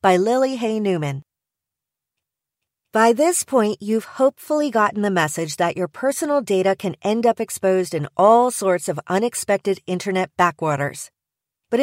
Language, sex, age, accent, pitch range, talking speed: English, female, 40-59, American, 180-240 Hz, 140 wpm